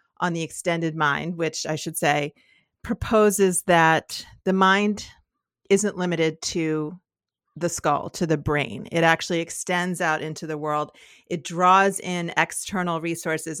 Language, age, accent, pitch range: English, 40-59, American, 155-185 Hz